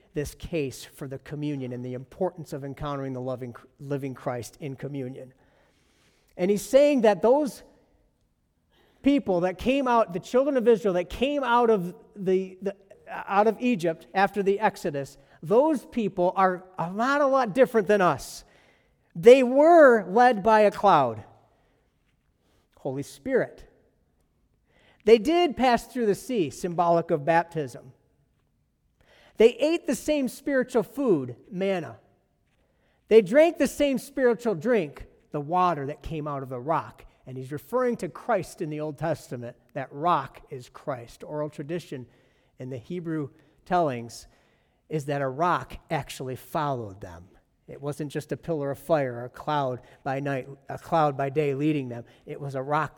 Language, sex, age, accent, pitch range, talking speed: English, male, 50-69, American, 135-210 Hz, 155 wpm